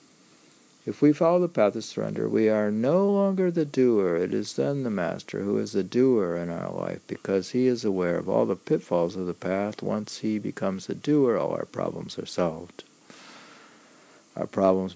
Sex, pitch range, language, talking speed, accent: male, 95-130 Hz, English, 195 wpm, American